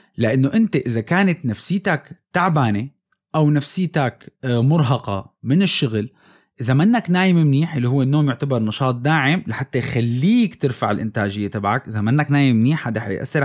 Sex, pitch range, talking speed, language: male, 120-170 Hz, 145 wpm, Arabic